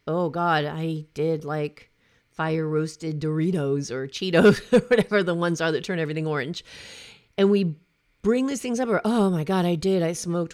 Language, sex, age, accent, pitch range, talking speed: English, female, 40-59, American, 160-220 Hz, 190 wpm